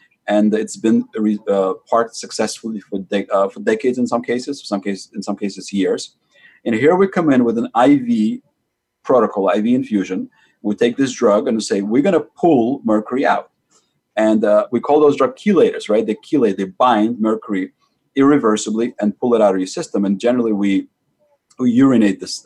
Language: English